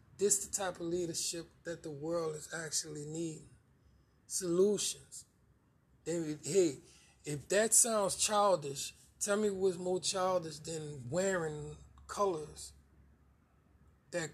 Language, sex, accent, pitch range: English, male, American, 145-190 Hz